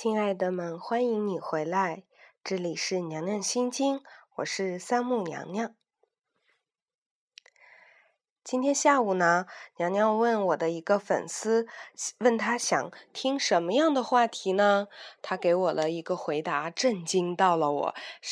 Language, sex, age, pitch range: Chinese, female, 20-39, 160-235 Hz